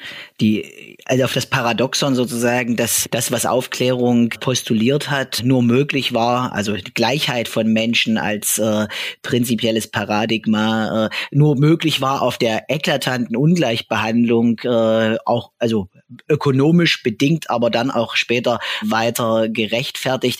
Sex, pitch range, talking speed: male, 115-135 Hz, 125 wpm